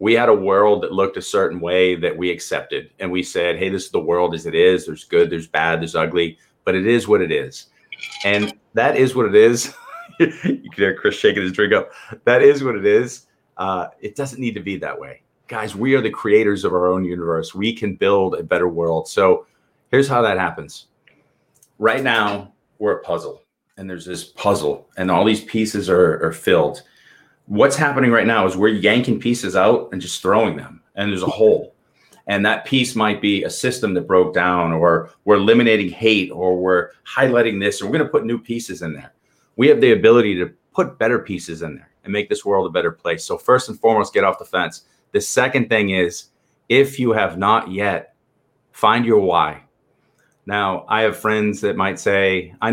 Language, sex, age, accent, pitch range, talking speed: English, male, 30-49, American, 90-120 Hz, 210 wpm